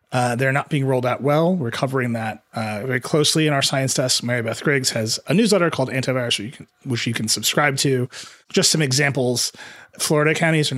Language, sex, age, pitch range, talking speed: English, male, 30-49, 120-155 Hz, 215 wpm